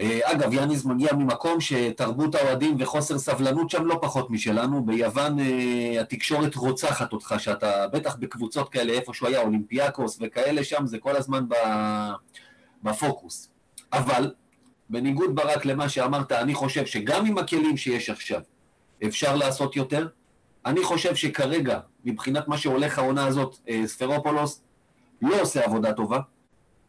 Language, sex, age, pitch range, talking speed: Hebrew, male, 40-59, 125-160 Hz, 135 wpm